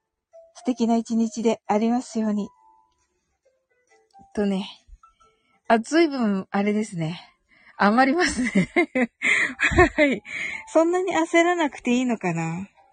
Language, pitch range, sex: Japanese, 190-280 Hz, female